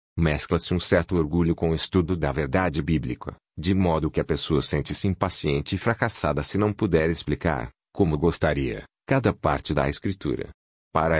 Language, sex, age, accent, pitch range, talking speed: Portuguese, male, 40-59, Brazilian, 80-95 Hz, 160 wpm